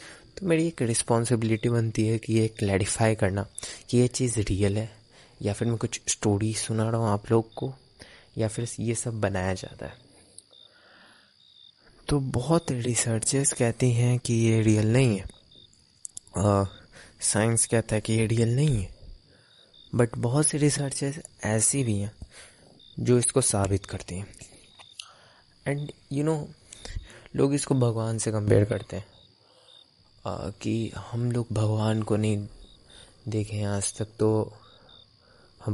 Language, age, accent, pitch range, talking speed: Hindi, 20-39, native, 100-120 Hz, 145 wpm